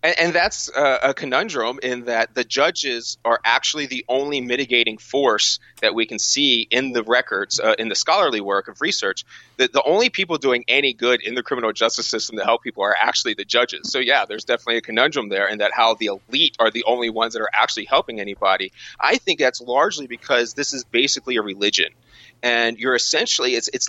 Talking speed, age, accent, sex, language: 205 wpm, 30-49, American, male, English